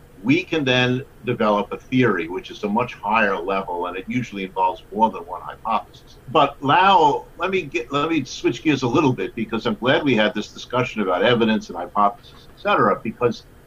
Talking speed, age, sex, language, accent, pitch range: 200 wpm, 60-79, male, English, American, 100-130 Hz